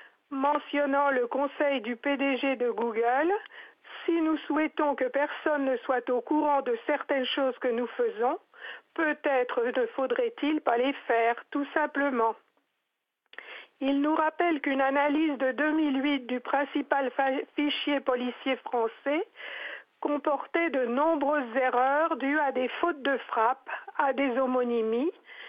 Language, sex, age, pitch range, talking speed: French, female, 50-69, 255-305 Hz, 130 wpm